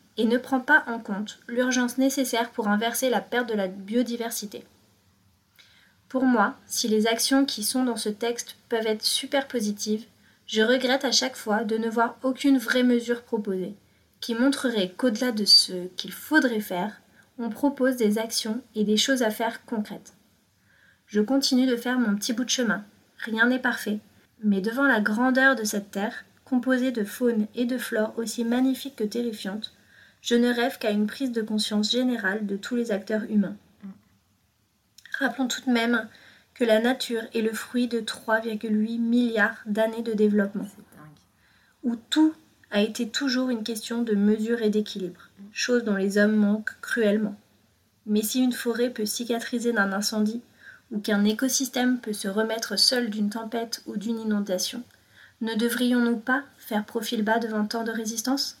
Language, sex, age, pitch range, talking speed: French, female, 30-49, 210-245 Hz, 170 wpm